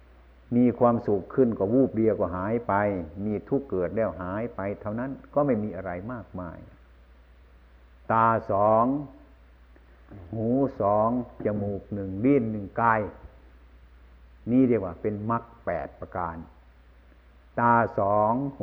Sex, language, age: male, Thai, 60-79